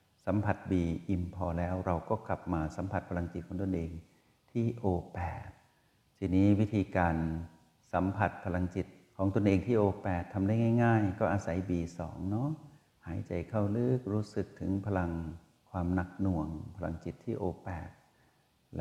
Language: Thai